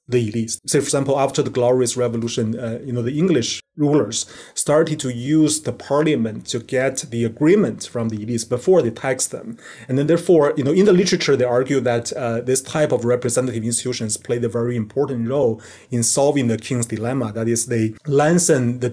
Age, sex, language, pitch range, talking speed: 30-49, male, English, 115-145 Hz, 200 wpm